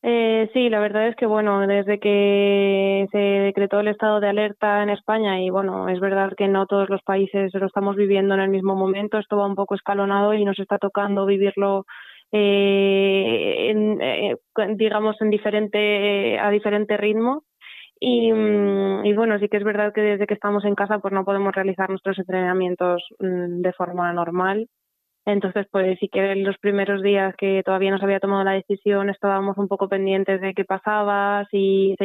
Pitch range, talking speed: 190-205 Hz, 190 wpm